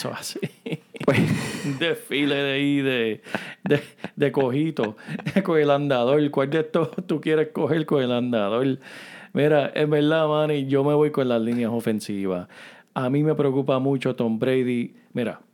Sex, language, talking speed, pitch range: male, Spanish, 160 wpm, 120-150 Hz